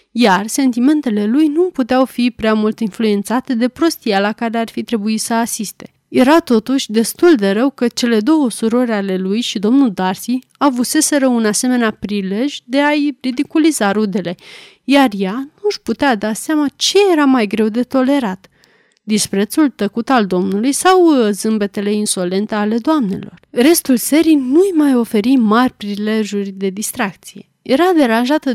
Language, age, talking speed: Romanian, 30-49, 150 wpm